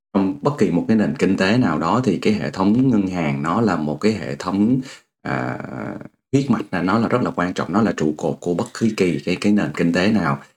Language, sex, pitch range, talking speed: Vietnamese, male, 80-110 Hz, 250 wpm